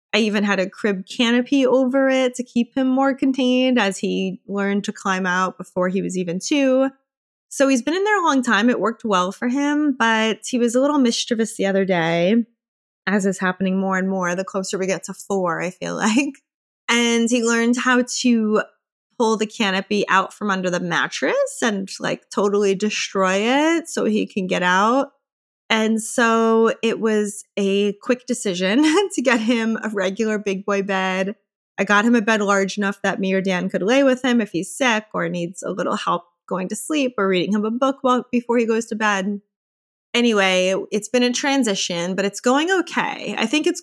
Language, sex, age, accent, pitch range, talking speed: English, female, 20-39, American, 195-250 Hz, 200 wpm